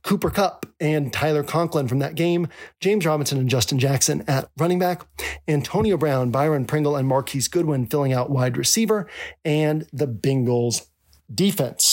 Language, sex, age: English, male, 40-59